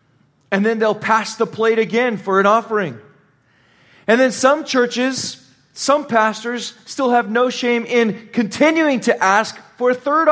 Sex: male